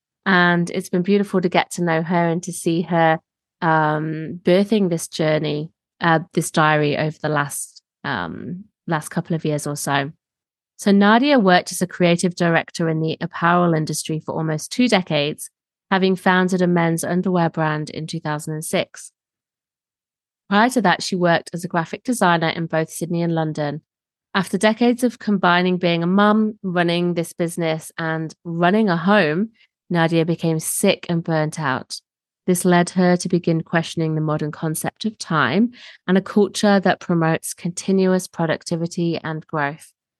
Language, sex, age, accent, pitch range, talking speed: English, female, 30-49, British, 160-185 Hz, 160 wpm